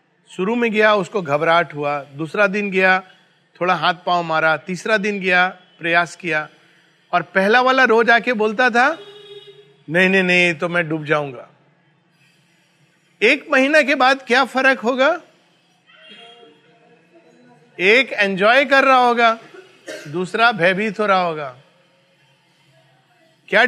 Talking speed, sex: 125 wpm, male